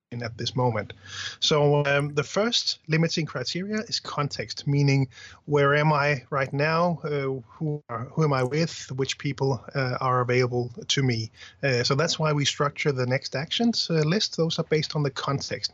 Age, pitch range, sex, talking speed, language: 30-49, 125-150 Hz, male, 185 wpm, English